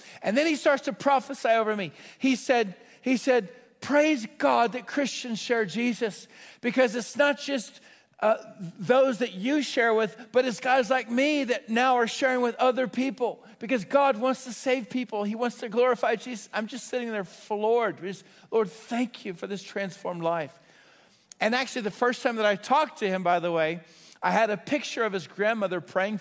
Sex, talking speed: male, 195 wpm